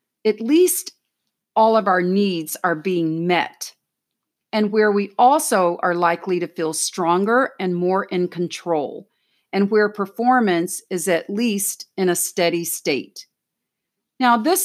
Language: English